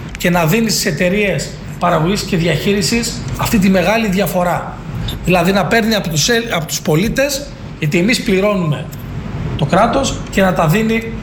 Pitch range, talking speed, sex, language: 160-210 Hz, 150 wpm, male, Greek